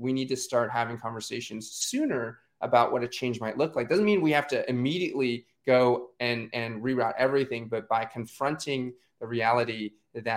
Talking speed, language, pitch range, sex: 180 wpm, English, 115-130 Hz, male